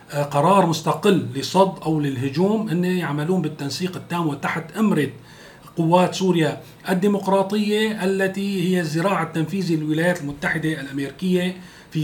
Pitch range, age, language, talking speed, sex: 135-175 Hz, 40-59, Arabic, 110 wpm, male